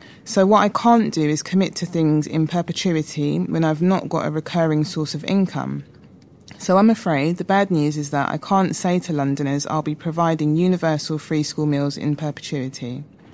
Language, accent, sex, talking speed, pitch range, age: English, British, female, 190 wpm, 150-180 Hz, 20-39